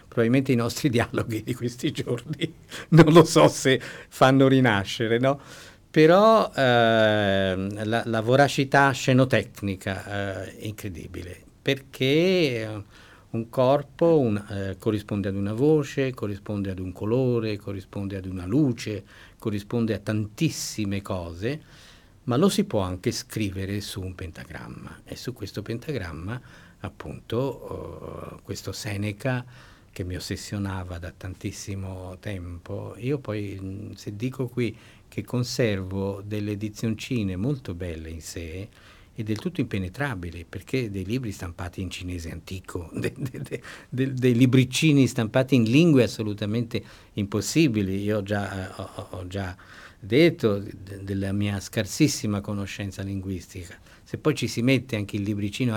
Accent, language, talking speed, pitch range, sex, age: native, Italian, 130 wpm, 95-125 Hz, male, 50-69